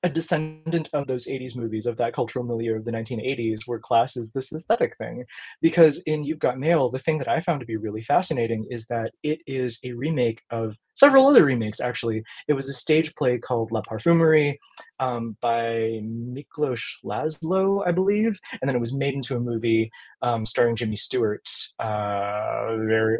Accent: American